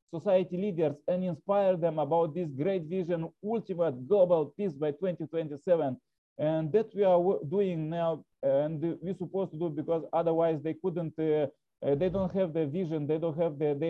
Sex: male